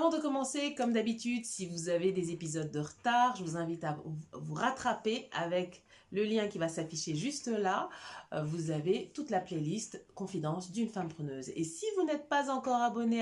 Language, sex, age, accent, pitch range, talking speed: French, female, 30-49, French, 175-250 Hz, 190 wpm